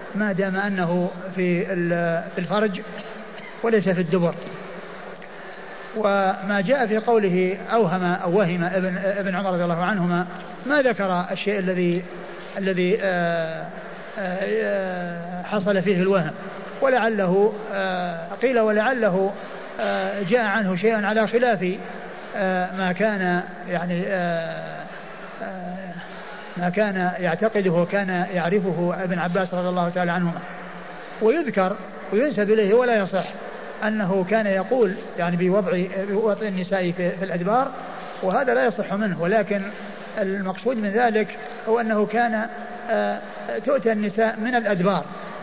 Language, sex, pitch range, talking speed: Arabic, male, 185-220 Hz, 105 wpm